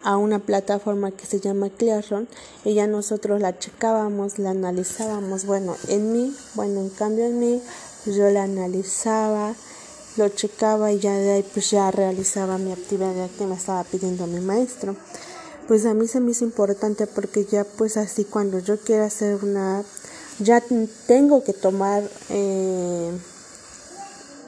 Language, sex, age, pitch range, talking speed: Spanish, female, 20-39, 195-225 Hz, 155 wpm